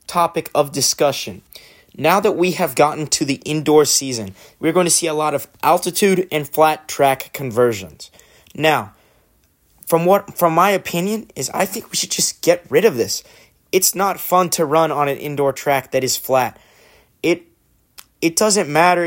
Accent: American